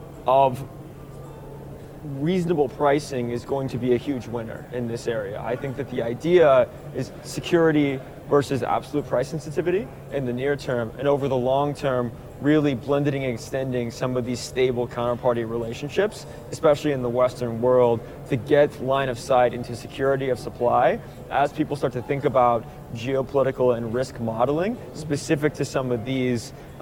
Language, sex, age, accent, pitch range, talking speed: English, male, 20-39, American, 120-145 Hz, 160 wpm